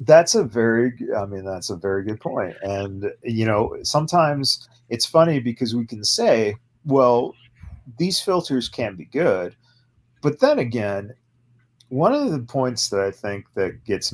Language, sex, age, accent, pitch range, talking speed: English, male, 40-59, American, 105-125 Hz, 160 wpm